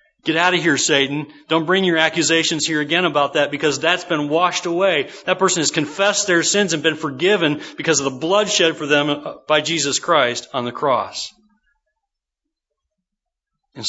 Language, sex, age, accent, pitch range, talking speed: English, male, 40-59, American, 150-200 Hz, 175 wpm